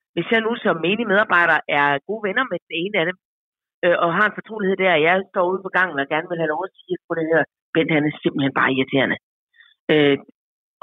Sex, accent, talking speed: female, native, 235 wpm